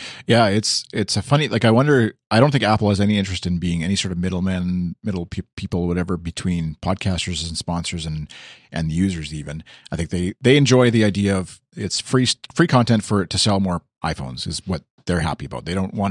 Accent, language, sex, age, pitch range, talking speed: American, English, male, 40-59, 85-110 Hz, 225 wpm